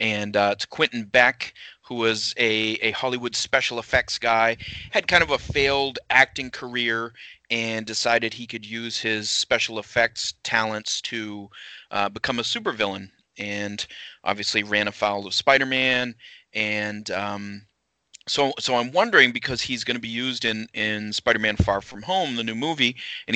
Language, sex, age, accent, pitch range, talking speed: English, male, 30-49, American, 105-120 Hz, 165 wpm